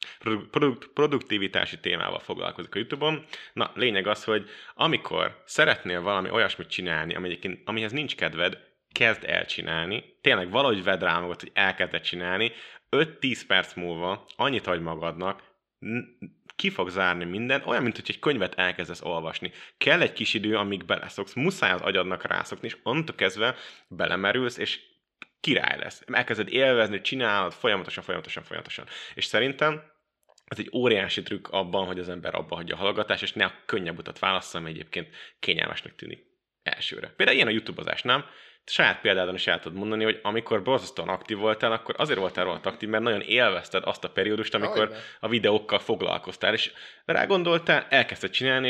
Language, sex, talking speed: Hungarian, male, 155 wpm